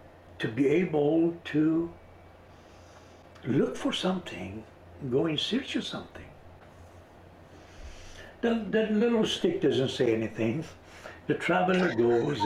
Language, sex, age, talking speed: English, male, 60-79, 100 wpm